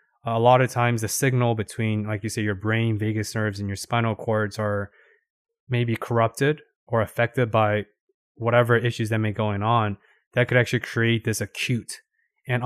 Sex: male